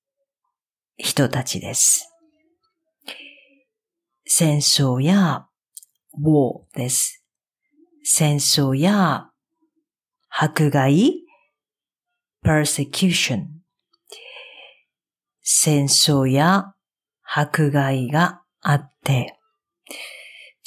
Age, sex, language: 50-69, female, Japanese